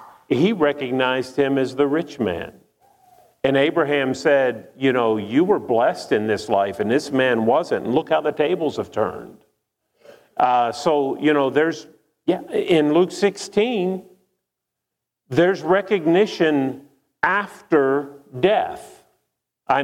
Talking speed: 130 wpm